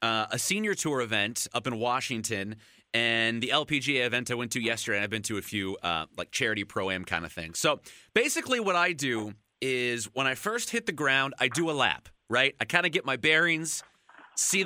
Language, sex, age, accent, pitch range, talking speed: English, male, 30-49, American, 130-195 Hz, 215 wpm